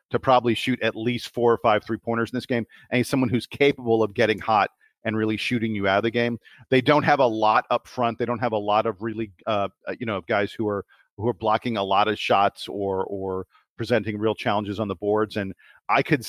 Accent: American